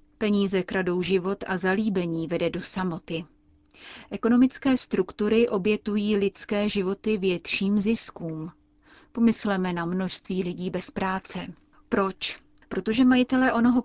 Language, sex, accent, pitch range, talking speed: Czech, female, native, 175-215 Hz, 110 wpm